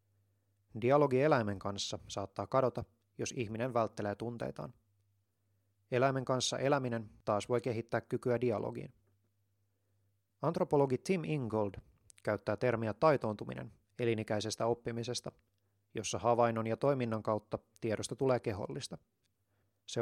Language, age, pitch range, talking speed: Finnish, 30-49, 100-125 Hz, 100 wpm